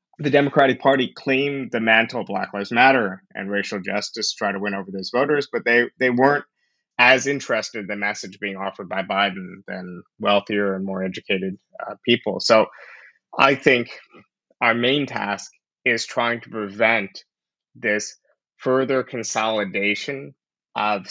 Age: 20-39